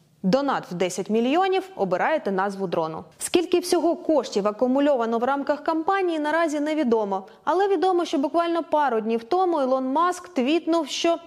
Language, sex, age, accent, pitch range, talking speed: Ukrainian, female, 20-39, native, 220-310 Hz, 145 wpm